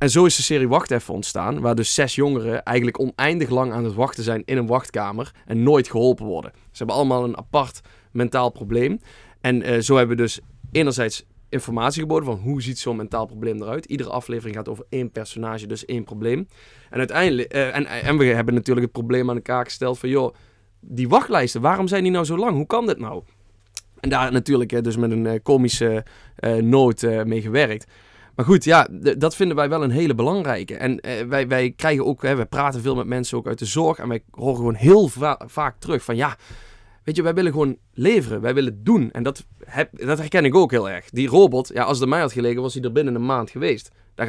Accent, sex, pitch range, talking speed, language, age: Dutch, male, 115-150 Hz, 220 wpm, Dutch, 20-39